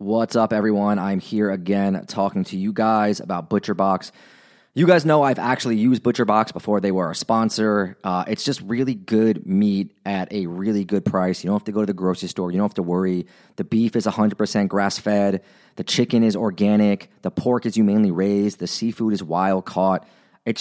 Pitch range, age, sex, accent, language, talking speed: 100-125 Hz, 30-49, male, American, English, 205 wpm